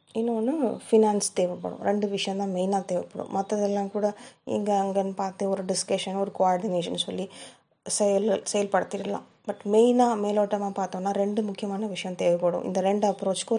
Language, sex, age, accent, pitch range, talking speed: Tamil, female, 20-39, native, 195-220 Hz, 135 wpm